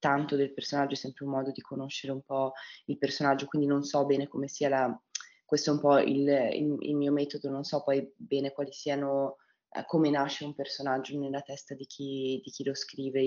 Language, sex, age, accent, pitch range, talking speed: Italian, female, 20-39, native, 130-145 Hz, 215 wpm